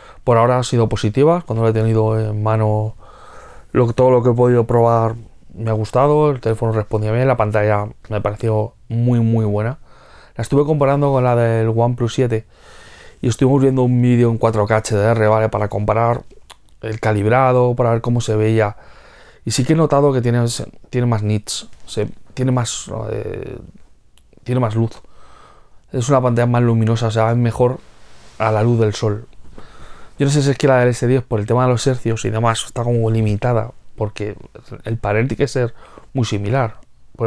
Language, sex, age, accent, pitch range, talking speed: Spanish, male, 20-39, Spanish, 110-125 Hz, 195 wpm